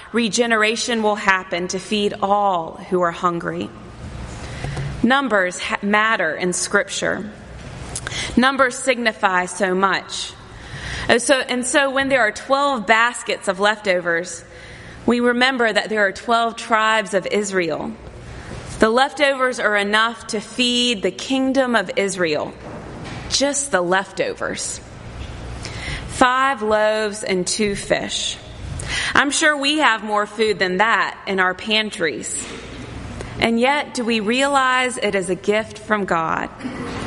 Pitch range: 190-245 Hz